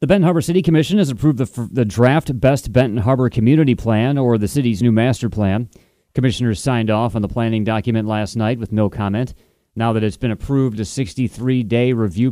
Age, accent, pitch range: 30-49, American, 105-125 Hz